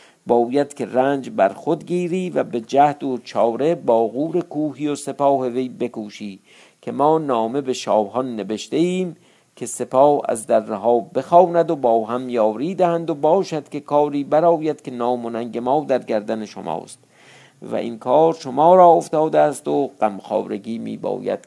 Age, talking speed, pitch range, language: 50-69, 155 wpm, 115-155 Hz, Persian